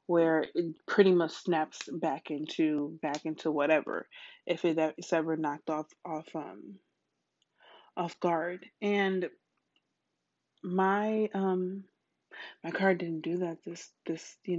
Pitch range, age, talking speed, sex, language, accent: 160-185 Hz, 20-39, 125 wpm, female, English, American